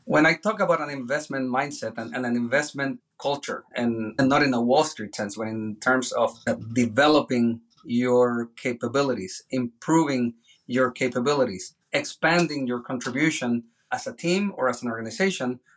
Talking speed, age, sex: 150 wpm, 30-49, male